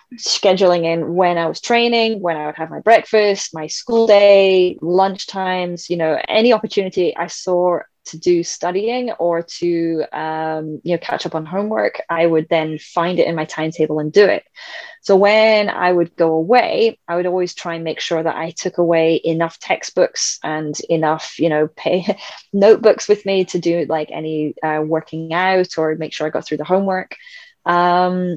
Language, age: English, 20-39